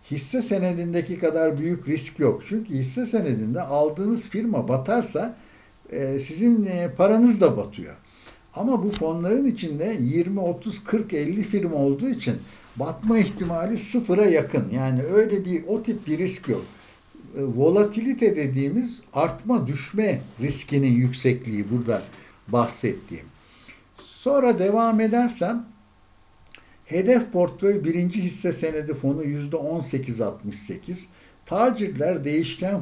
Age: 60-79